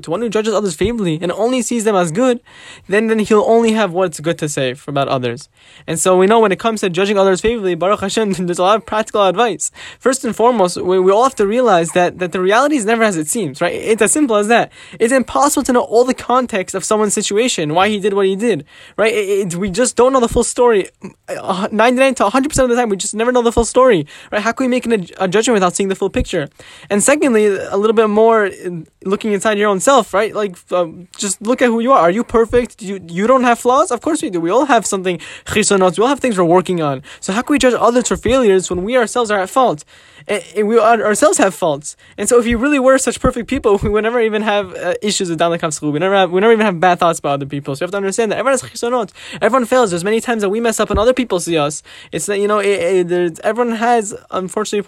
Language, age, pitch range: English, 10-29, 190-240 Hz